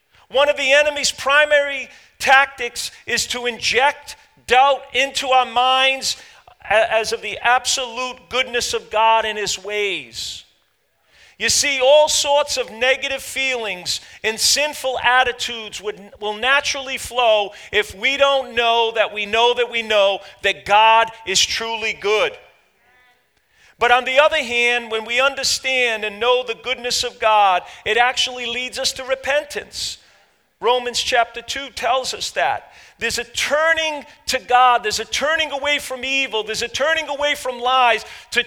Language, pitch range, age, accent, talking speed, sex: English, 215-270 Hz, 40-59, American, 150 wpm, male